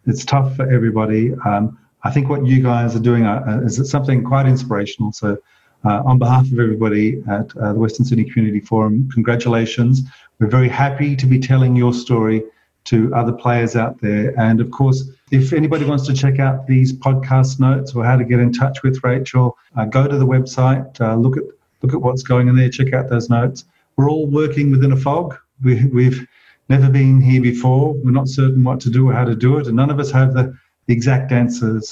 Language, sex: English, male